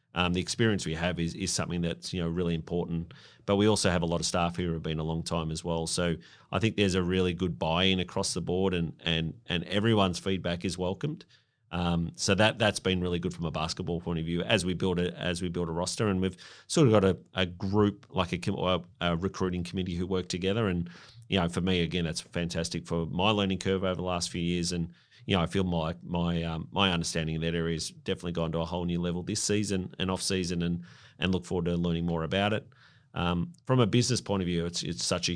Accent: Australian